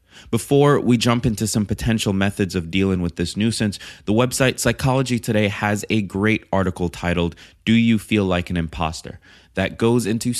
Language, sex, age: English, male, 20-39